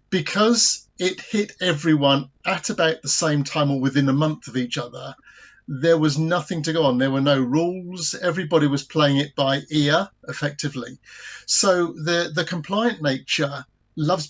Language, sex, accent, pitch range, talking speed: English, male, British, 140-190 Hz, 165 wpm